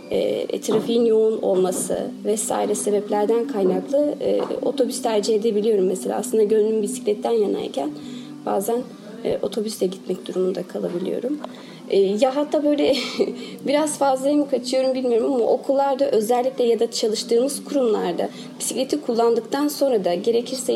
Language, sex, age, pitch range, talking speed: Turkish, female, 30-49, 220-270 Hz, 120 wpm